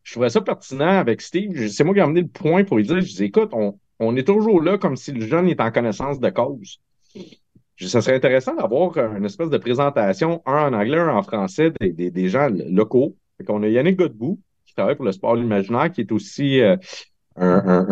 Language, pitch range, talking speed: French, 105-160 Hz, 220 wpm